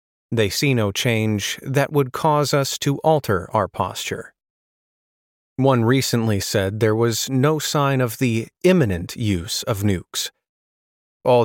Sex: male